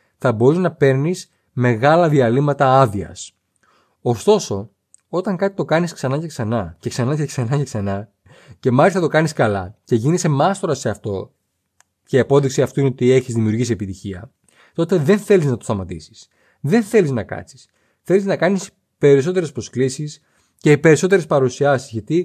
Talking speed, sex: 160 wpm, male